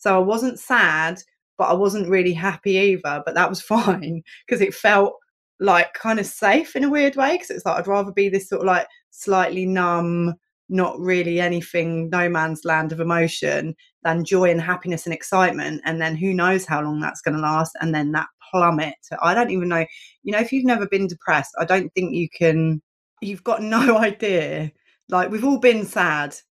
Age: 20-39